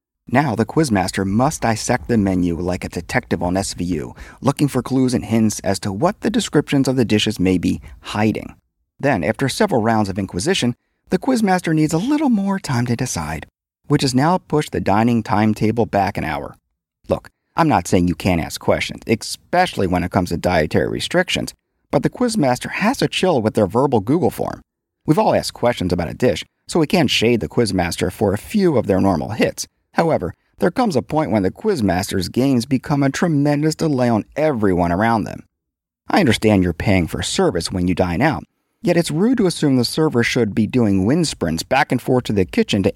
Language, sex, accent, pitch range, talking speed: English, male, American, 95-140 Hz, 205 wpm